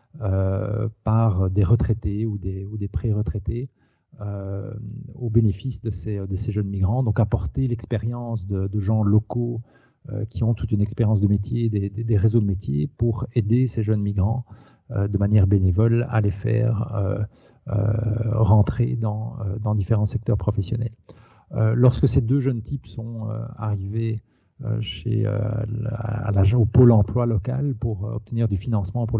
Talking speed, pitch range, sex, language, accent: 160 wpm, 105-120 Hz, male, French, French